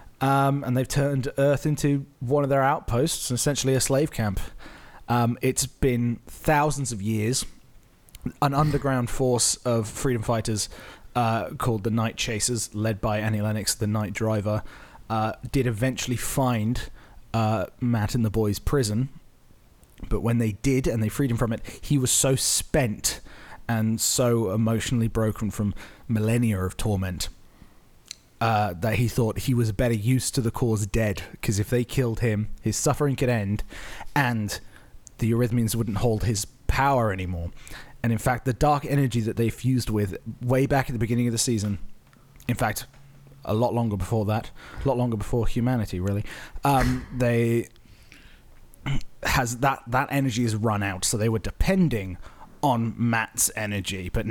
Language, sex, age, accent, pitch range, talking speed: English, male, 30-49, British, 110-130 Hz, 160 wpm